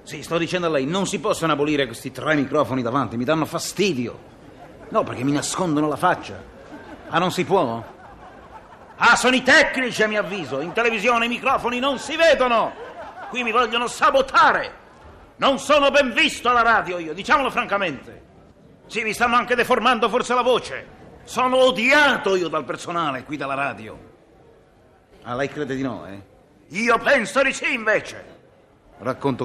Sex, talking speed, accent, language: male, 165 wpm, native, Italian